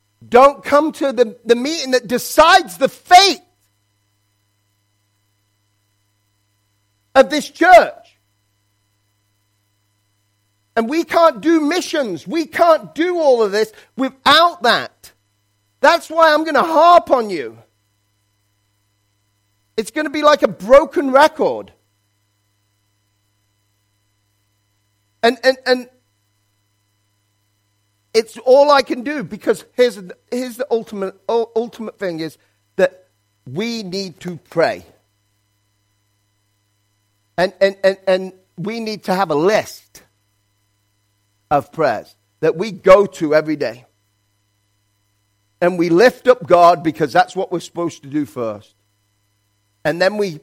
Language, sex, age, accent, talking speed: English, male, 40-59, British, 115 wpm